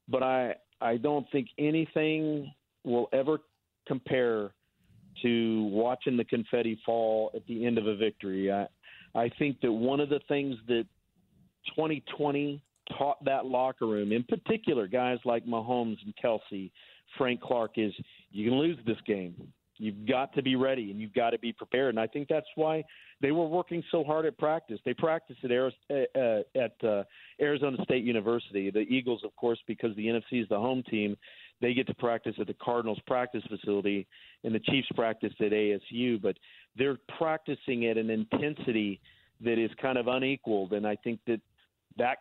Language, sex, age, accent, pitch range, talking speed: English, male, 50-69, American, 115-145 Hz, 170 wpm